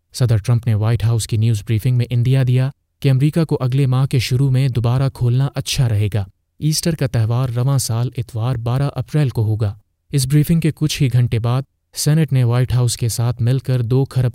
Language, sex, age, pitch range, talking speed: Urdu, male, 30-49, 115-135 Hz, 215 wpm